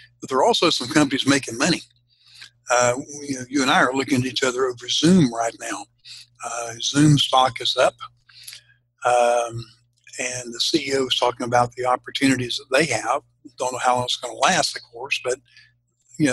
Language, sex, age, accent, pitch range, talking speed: English, male, 60-79, American, 125-140 Hz, 185 wpm